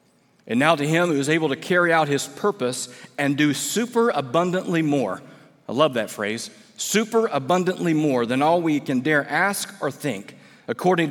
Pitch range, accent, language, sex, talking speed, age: 140-205 Hz, American, English, male, 180 wpm, 40-59